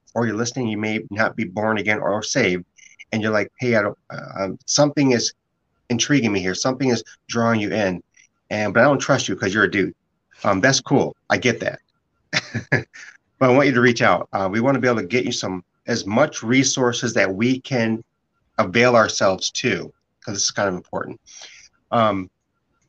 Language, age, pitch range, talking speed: English, 30-49, 110-135 Hz, 200 wpm